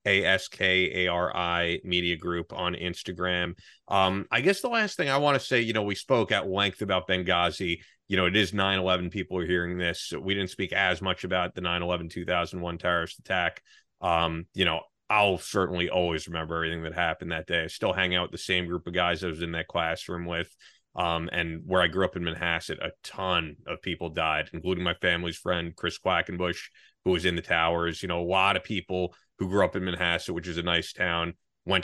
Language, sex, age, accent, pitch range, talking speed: English, male, 30-49, American, 85-95 Hz, 210 wpm